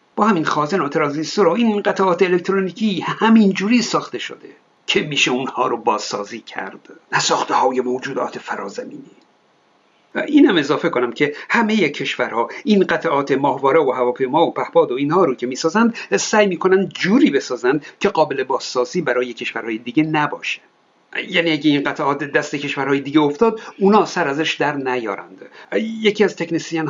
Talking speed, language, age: 155 wpm, Persian, 50-69